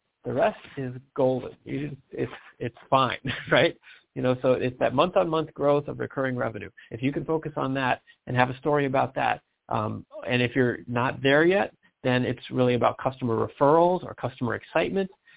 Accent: American